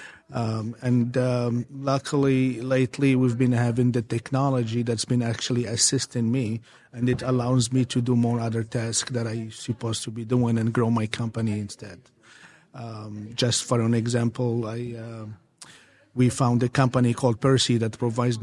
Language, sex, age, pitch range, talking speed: English, male, 50-69, 115-125 Hz, 165 wpm